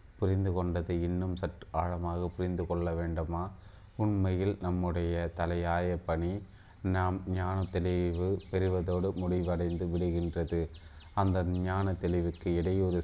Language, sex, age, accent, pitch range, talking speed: Tamil, male, 30-49, native, 85-95 Hz, 100 wpm